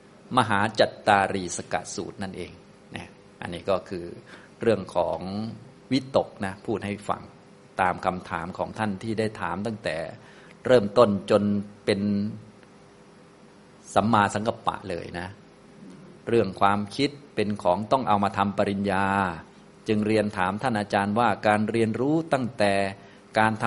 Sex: male